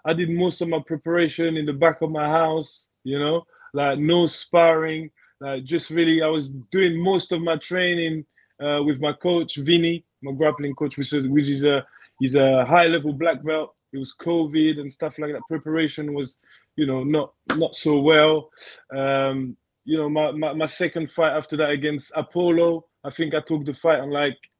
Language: Czech